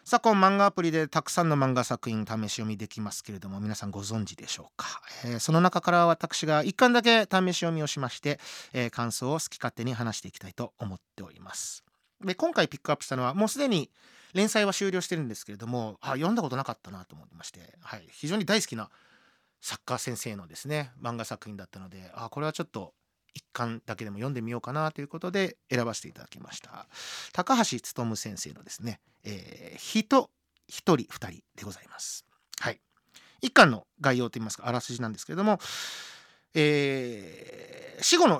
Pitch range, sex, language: 115-190 Hz, male, Japanese